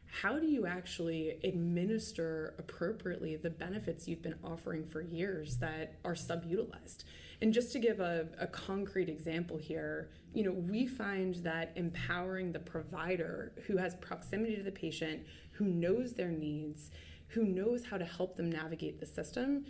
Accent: American